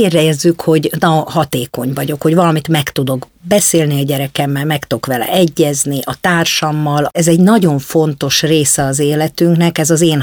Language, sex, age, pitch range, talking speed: Hungarian, female, 50-69, 145-170 Hz, 160 wpm